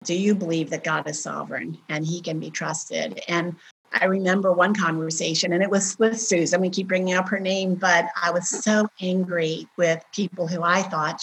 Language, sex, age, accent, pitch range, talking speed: English, female, 50-69, American, 165-200 Hz, 205 wpm